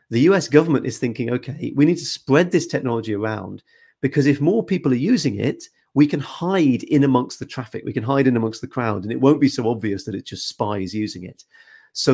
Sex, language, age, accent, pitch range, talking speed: male, English, 30-49, British, 115-155 Hz, 230 wpm